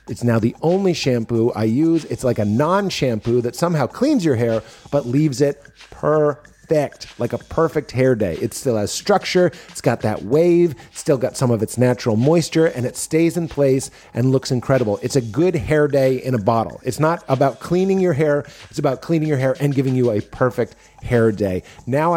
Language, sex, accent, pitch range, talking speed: English, male, American, 115-145 Hz, 205 wpm